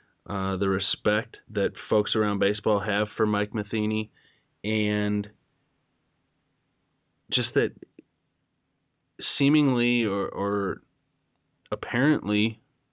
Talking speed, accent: 85 wpm, American